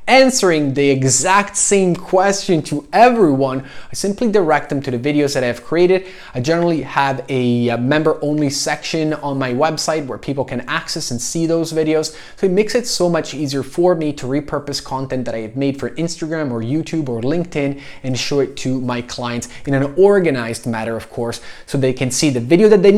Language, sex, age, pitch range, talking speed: English, male, 20-39, 130-175 Hz, 200 wpm